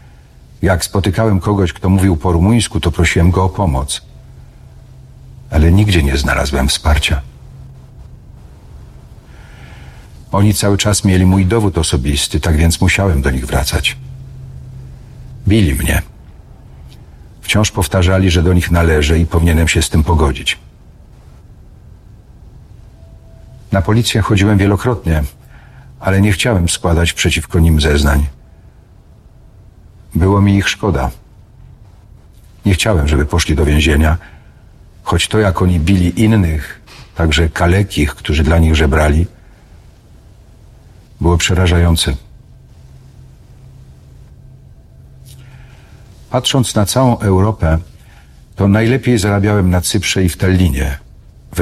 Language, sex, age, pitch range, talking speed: Polish, male, 50-69, 80-105 Hz, 105 wpm